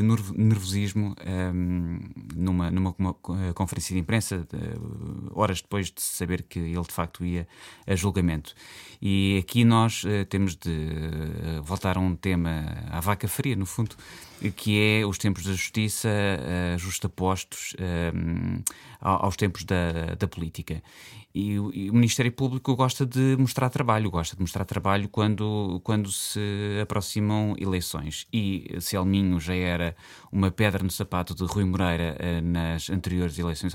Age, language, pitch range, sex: 20-39, Portuguese, 90-105 Hz, male